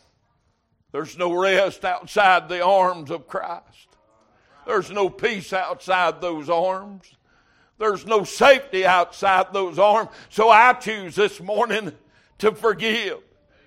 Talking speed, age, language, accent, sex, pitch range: 120 wpm, 60-79, English, American, male, 185-225 Hz